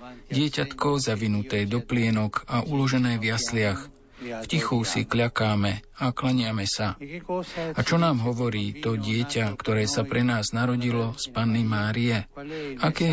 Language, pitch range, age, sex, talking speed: Slovak, 115-135 Hz, 50-69, male, 135 wpm